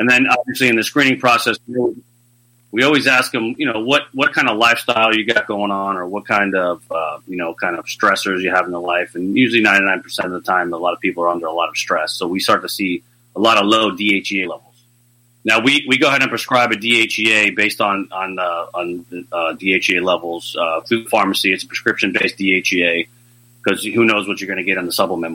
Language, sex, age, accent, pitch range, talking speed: English, male, 30-49, American, 95-120 Hz, 235 wpm